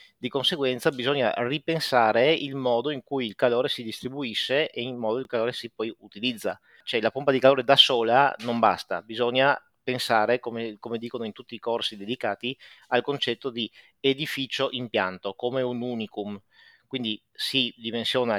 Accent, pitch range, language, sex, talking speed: native, 115-145 Hz, Italian, male, 170 wpm